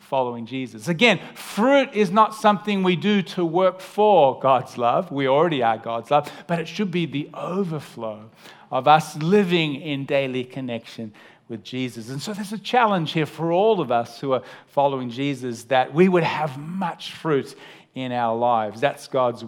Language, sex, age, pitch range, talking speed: English, male, 40-59, 135-190 Hz, 180 wpm